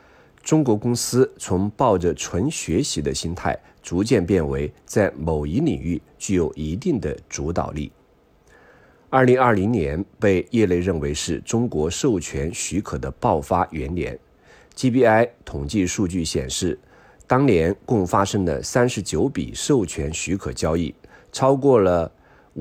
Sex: male